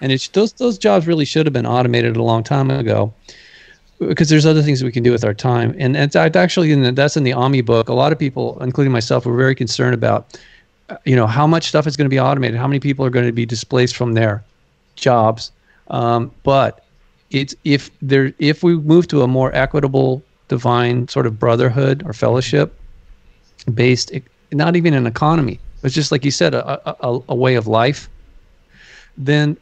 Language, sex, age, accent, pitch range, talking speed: English, male, 40-59, American, 120-145 Hz, 210 wpm